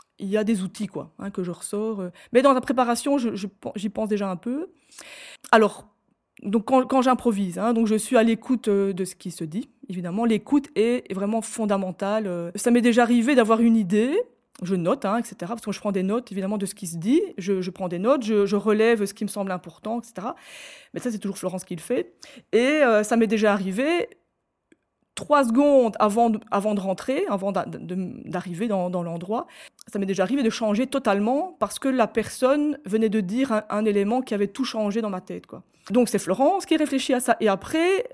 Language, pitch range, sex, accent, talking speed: French, 200-255 Hz, female, French, 225 wpm